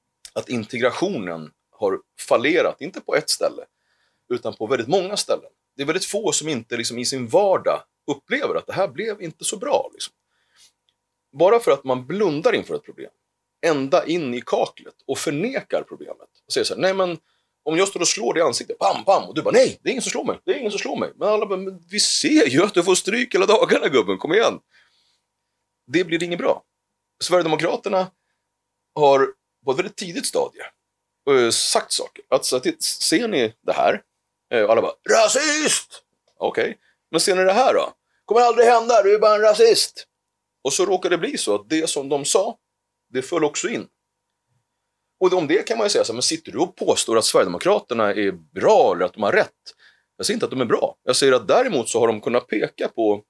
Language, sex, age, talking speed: Swedish, male, 30-49, 215 wpm